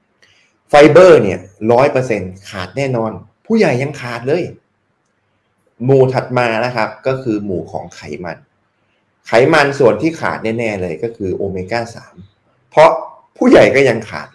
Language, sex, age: Thai, male, 20-39